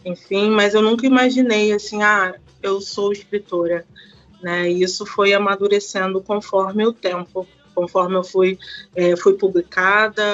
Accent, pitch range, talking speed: Brazilian, 185-210 Hz, 140 wpm